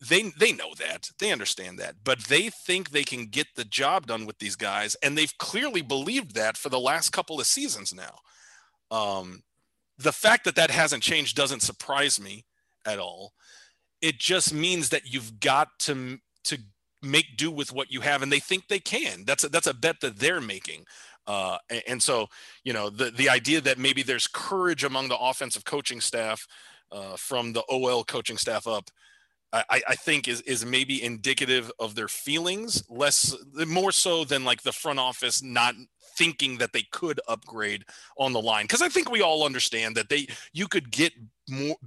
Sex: male